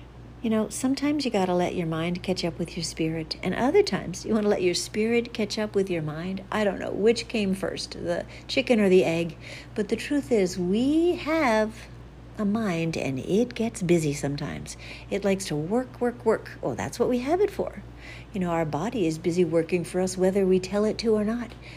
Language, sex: English, female